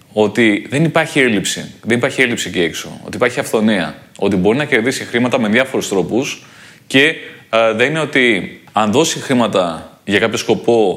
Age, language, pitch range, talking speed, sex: 20-39, Greek, 110-150 Hz, 170 wpm, male